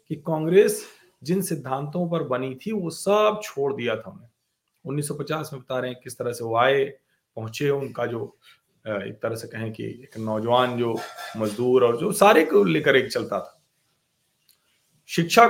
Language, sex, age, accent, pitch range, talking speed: Hindi, male, 40-59, native, 130-180 Hz, 165 wpm